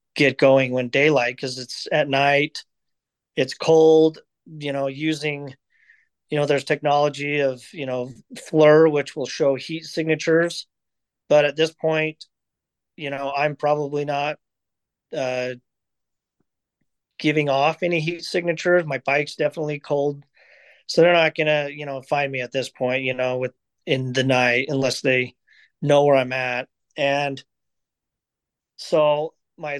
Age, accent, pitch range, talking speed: 30-49, American, 135-155 Hz, 145 wpm